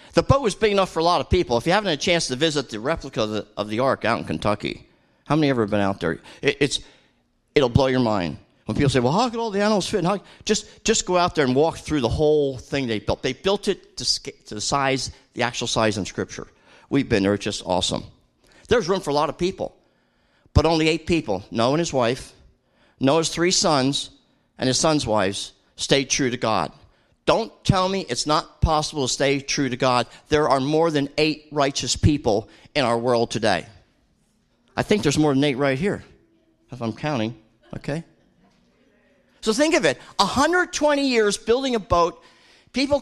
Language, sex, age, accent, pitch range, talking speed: English, male, 50-69, American, 115-175 Hz, 215 wpm